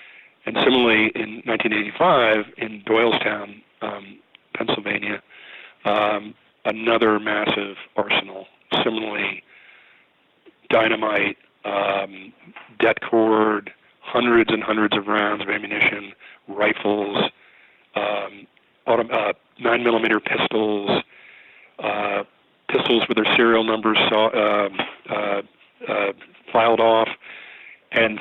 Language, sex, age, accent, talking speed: English, male, 40-59, American, 85 wpm